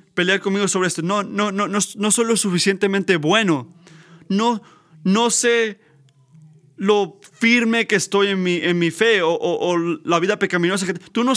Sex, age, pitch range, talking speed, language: male, 30-49, 175-230 Hz, 185 wpm, Spanish